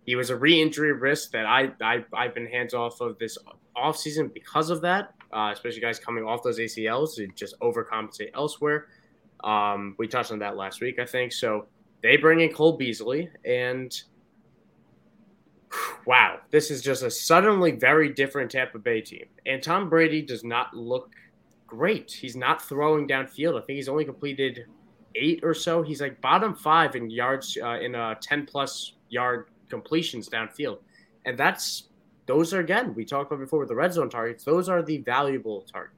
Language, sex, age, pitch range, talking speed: English, male, 20-39, 120-155 Hz, 180 wpm